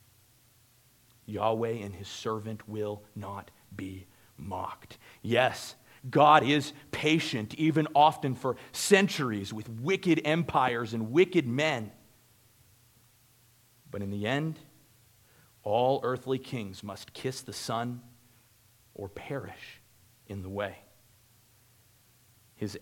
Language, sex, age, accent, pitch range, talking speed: English, male, 40-59, American, 110-130 Hz, 105 wpm